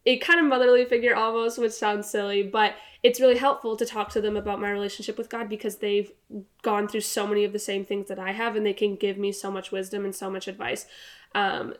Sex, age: female, 10-29